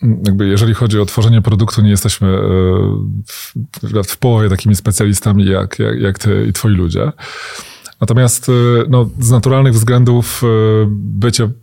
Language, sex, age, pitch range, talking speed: Polish, male, 20-39, 100-115 Hz, 130 wpm